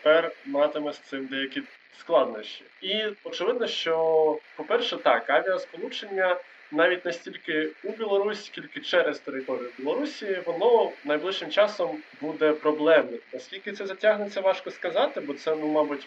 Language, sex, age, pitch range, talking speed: Ukrainian, male, 20-39, 140-180 Hz, 130 wpm